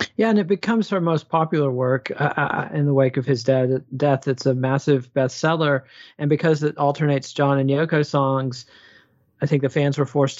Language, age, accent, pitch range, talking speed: English, 30-49, American, 135-155 Hz, 195 wpm